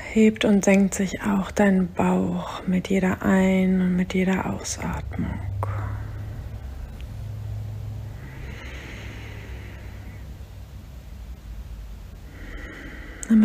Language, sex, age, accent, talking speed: German, female, 30-49, German, 65 wpm